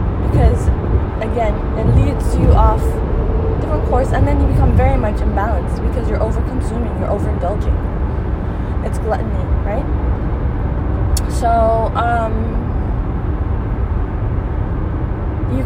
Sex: female